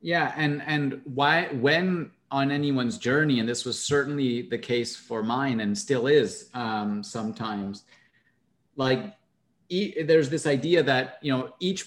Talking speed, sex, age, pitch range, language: 150 wpm, male, 30-49, 125-150 Hz, English